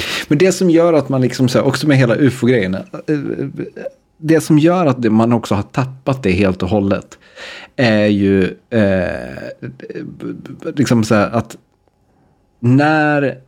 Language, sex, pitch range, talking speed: Swedish, male, 100-130 Hz, 140 wpm